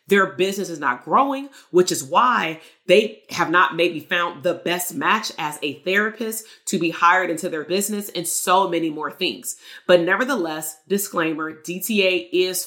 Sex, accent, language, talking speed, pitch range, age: female, American, English, 165 wpm, 155-190 Hz, 30-49